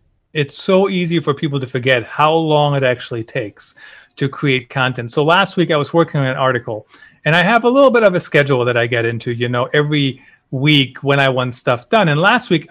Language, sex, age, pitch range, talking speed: English, male, 30-49, 140-185 Hz, 230 wpm